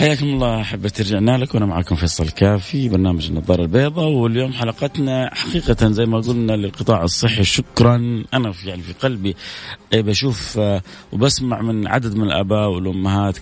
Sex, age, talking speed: male, 30-49, 140 wpm